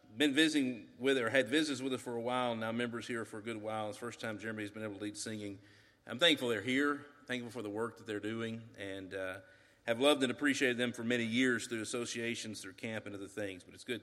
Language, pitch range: English, 105-145 Hz